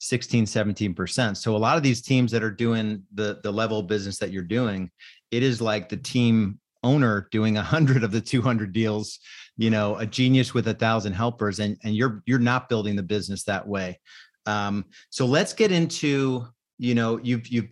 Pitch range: 105-125 Hz